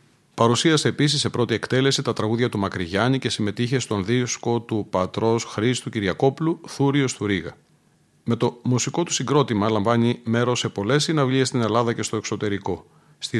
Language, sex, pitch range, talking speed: Greek, male, 105-130 Hz, 160 wpm